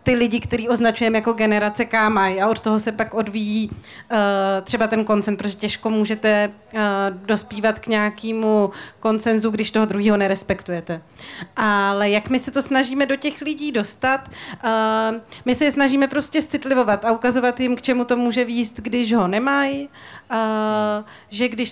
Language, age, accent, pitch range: Czech, 30-49, native, 210-240 Hz